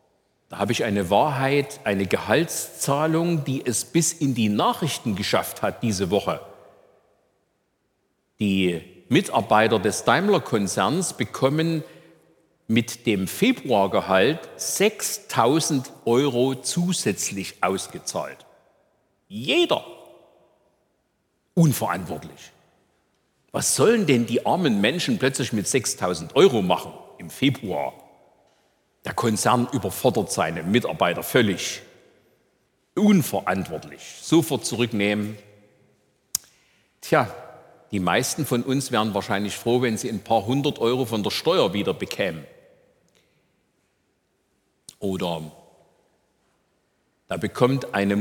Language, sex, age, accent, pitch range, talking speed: German, male, 50-69, German, 100-145 Hz, 95 wpm